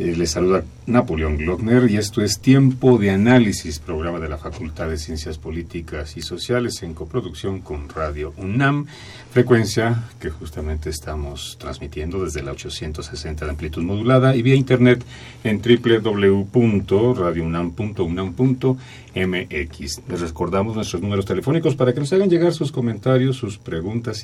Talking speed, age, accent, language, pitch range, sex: 135 wpm, 40-59, Mexican, Spanish, 85-125 Hz, male